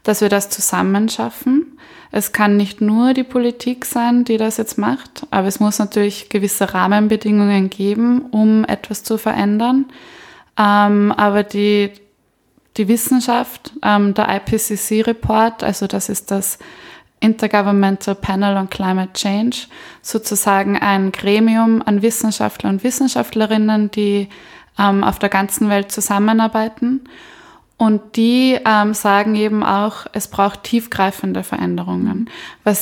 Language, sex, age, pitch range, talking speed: German, female, 20-39, 200-225 Hz, 120 wpm